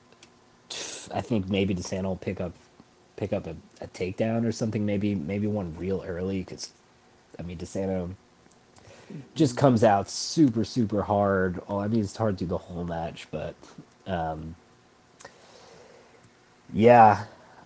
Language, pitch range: English, 90-115 Hz